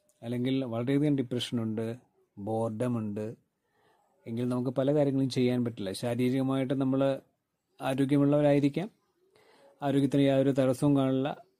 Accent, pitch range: native, 120-145 Hz